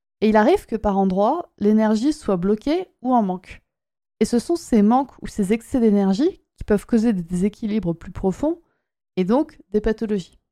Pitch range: 190-235 Hz